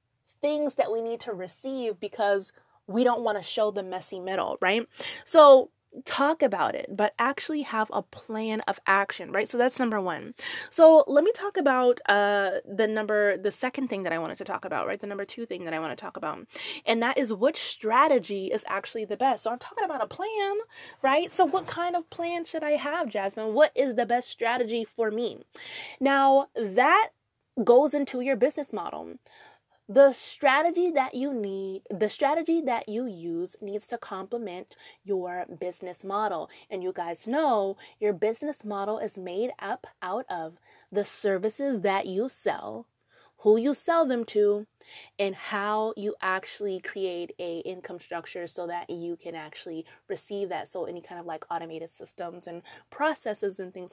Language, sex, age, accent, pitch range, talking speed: English, female, 20-39, American, 190-270 Hz, 180 wpm